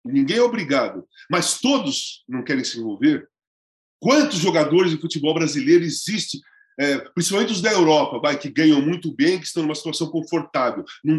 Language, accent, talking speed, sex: Portuguese, Brazilian, 165 wpm, male